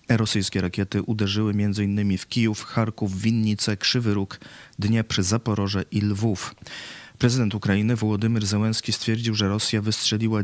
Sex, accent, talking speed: male, native, 125 wpm